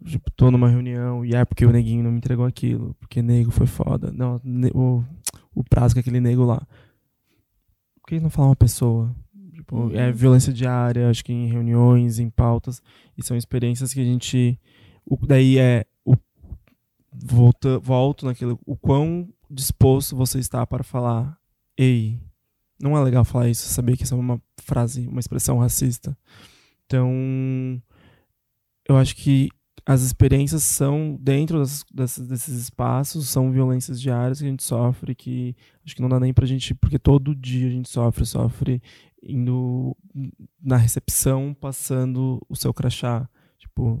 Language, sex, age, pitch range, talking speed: Portuguese, male, 20-39, 120-135 Hz, 160 wpm